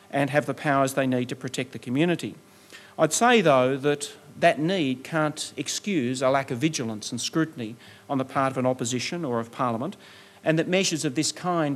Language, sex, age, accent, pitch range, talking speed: English, male, 40-59, Australian, 130-160 Hz, 200 wpm